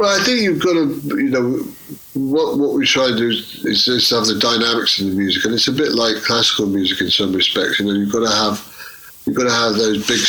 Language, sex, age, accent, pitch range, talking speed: Portuguese, male, 60-79, British, 95-110 Hz, 265 wpm